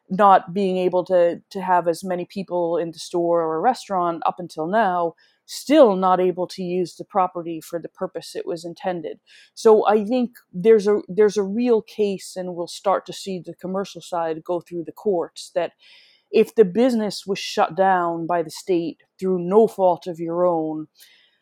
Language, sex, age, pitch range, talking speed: English, female, 20-39, 170-215 Hz, 190 wpm